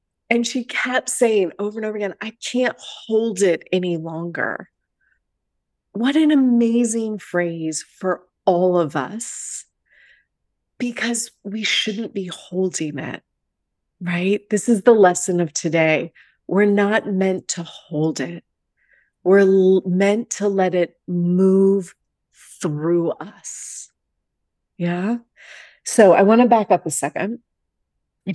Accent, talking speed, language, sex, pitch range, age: American, 125 wpm, English, female, 160-210 Hz, 30-49